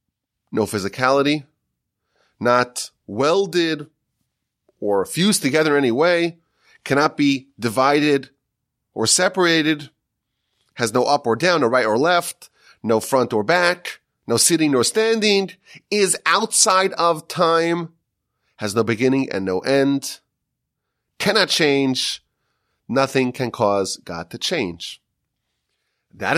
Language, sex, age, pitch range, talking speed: English, male, 30-49, 115-170 Hz, 120 wpm